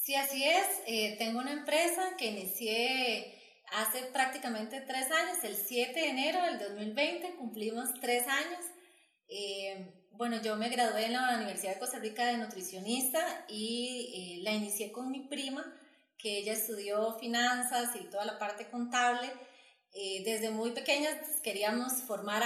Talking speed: 150 wpm